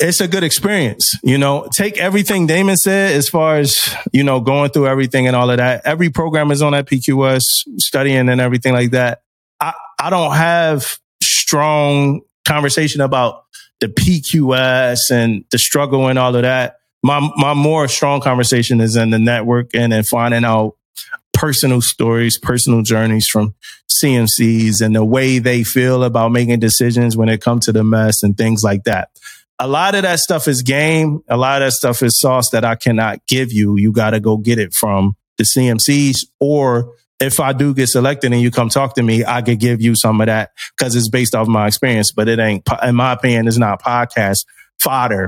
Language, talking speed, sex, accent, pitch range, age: English, 195 wpm, male, American, 115-140 Hz, 30-49